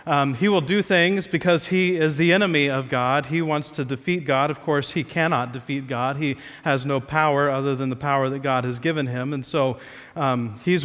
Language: English